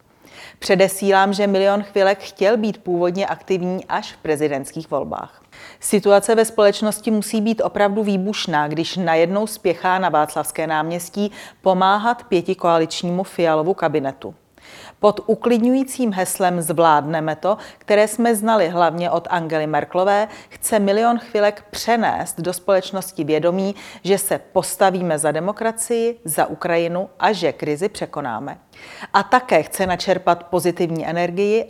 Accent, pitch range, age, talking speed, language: native, 165-205 Hz, 40-59, 125 wpm, Czech